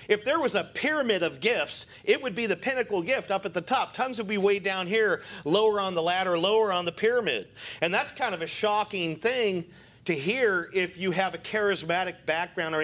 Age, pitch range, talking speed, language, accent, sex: 40-59, 150-225 Hz, 220 wpm, English, American, male